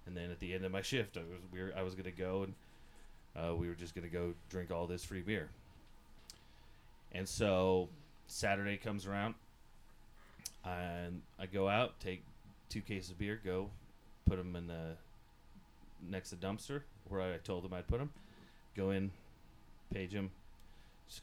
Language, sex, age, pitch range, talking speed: English, male, 30-49, 90-105 Hz, 170 wpm